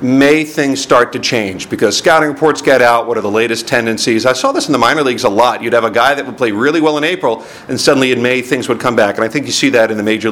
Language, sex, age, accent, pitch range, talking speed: English, male, 50-69, American, 115-155 Hz, 300 wpm